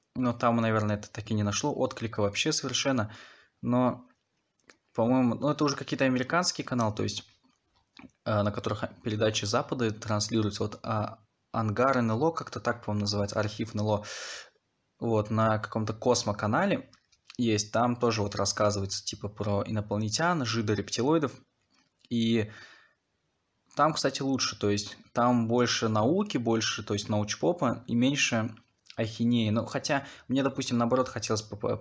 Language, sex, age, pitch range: Russian, male, 20-39, 105-125 Hz